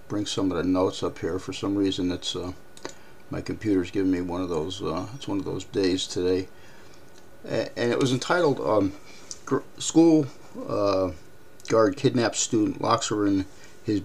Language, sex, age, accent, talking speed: English, male, 50-69, American, 175 wpm